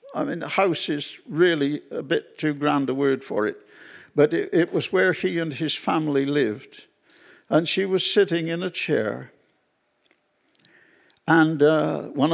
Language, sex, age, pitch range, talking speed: English, male, 60-79, 150-215 Hz, 165 wpm